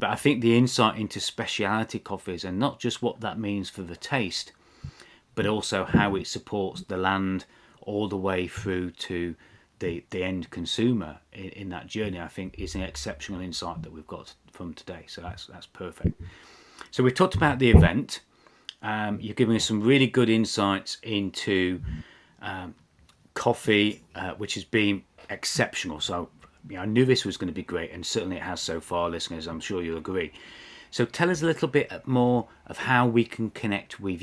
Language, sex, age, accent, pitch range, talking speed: English, male, 30-49, British, 90-115 Hz, 190 wpm